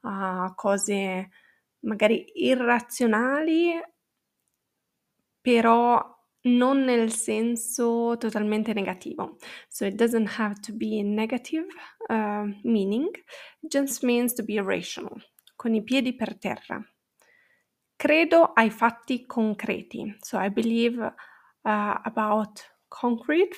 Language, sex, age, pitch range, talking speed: Italian, female, 20-39, 215-260 Hz, 105 wpm